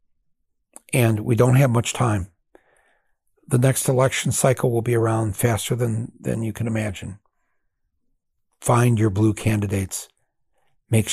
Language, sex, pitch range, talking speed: English, male, 95-120 Hz, 130 wpm